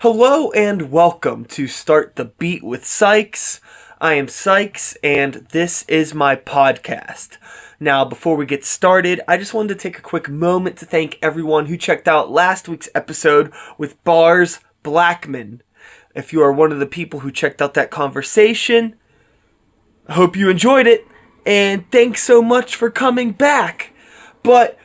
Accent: American